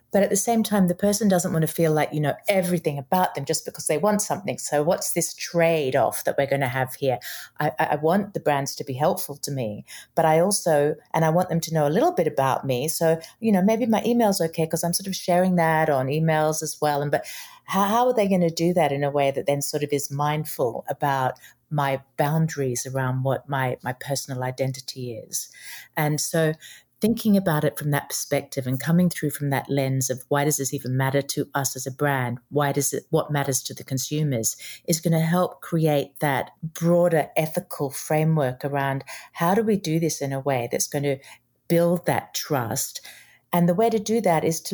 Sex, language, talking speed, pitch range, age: female, English, 225 wpm, 140-170 Hz, 30-49